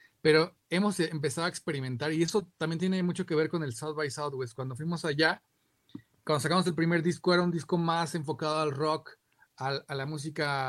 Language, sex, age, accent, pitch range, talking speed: Spanish, male, 40-59, Mexican, 130-160 Hz, 195 wpm